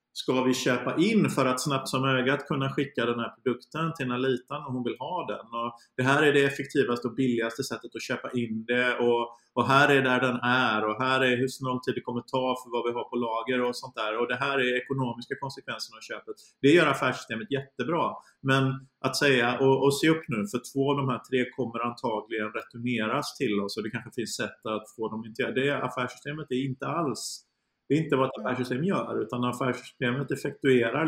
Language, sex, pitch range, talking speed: Swedish, male, 120-135 Hz, 220 wpm